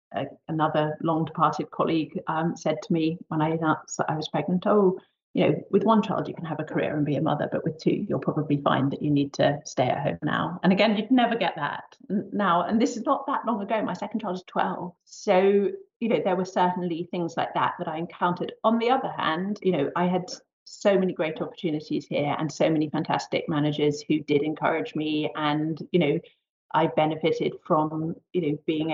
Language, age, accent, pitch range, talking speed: English, 30-49, British, 160-185 Hz, 220 wpm